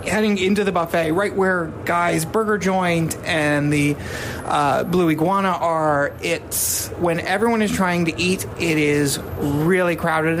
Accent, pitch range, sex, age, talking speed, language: American, 155-195 Hz, male, 30-49, 150 wpm, English